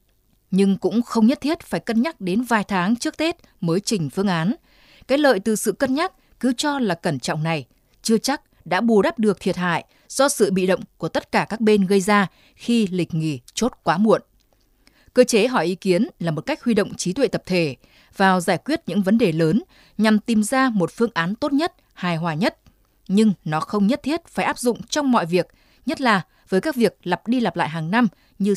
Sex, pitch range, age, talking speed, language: female, 175-235 Hz, 20-39, 230 wpm, Vietnamese